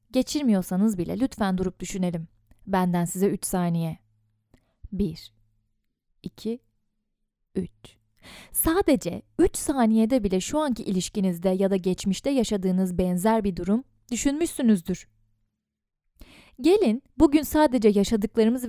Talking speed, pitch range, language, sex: 100 wpm, 170-240 Hz, Turkish, female